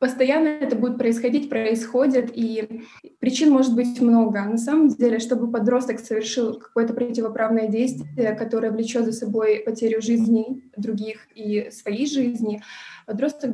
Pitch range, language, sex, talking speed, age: 225-255 Hz, Russian, female, 135 wpm, 20-39